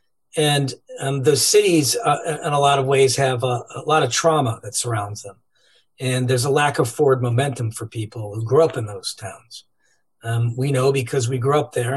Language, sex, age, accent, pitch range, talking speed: English, male, 40-59, American, 125-155 Hz, 210 wpm